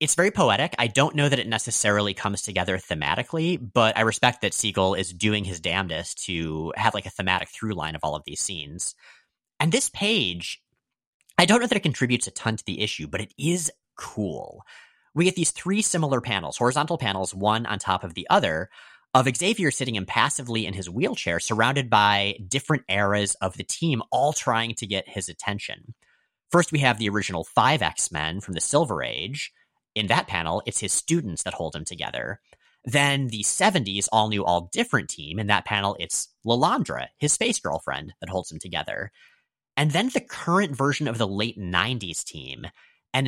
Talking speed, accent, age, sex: 185 wpm, American, 30-49, male